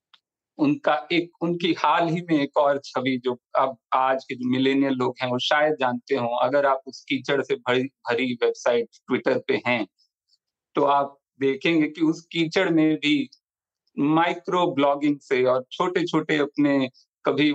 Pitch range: 130-170 Hz